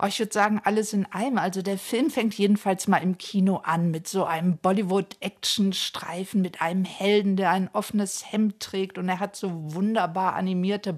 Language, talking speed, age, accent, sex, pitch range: German, 180 wpm, 50-69, German, female, 200-225 Hz